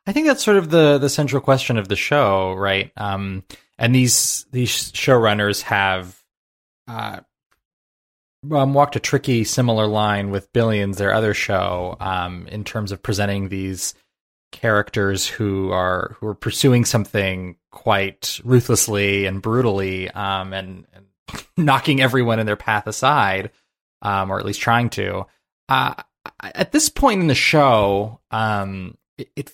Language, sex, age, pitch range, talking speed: English, male, 20-39, 95-120 Hz, 145 wpm